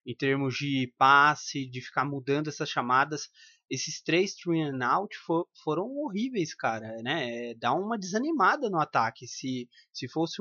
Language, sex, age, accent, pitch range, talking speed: Portuguese, male, 20-39, Brazilian, 140-210 Hz, 160 wpm